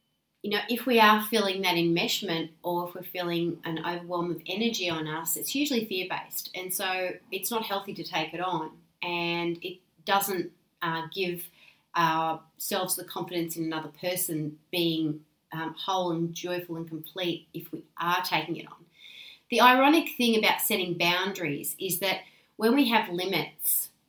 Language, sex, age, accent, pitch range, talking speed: English, female, 30-49, Australian, 170-195 Hz, 165 wpm